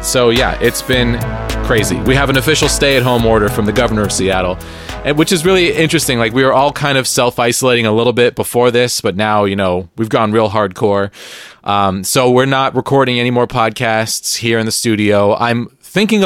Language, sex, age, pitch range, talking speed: English, male, 30-49, 110-145 Hz, 200 wpm